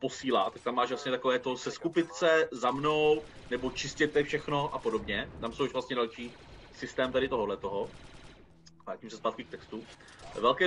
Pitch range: 125-160 Hz